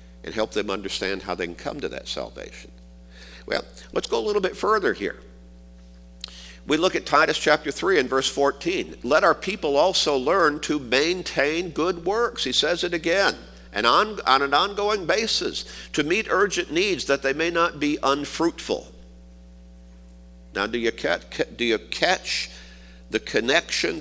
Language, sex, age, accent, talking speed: English, male, 50-69, American, 160 wpm